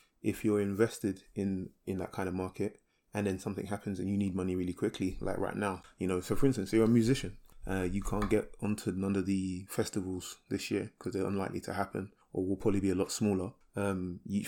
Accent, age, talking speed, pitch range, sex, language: British, 20-39, 225 wpm, 95-110 Hz, male, English